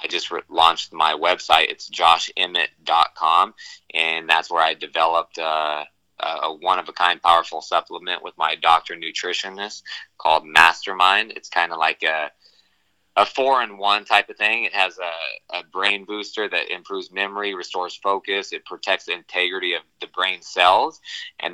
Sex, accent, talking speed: male, American, 150 wpm